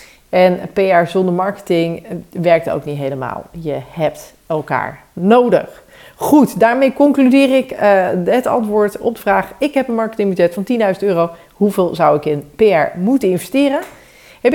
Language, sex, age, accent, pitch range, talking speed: Dutch, female, 40-59, Dutch, 185-250 Hz, 155 wpm